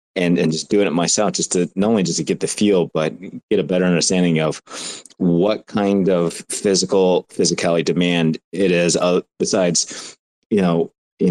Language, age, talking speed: English, 30-49, 180 wpm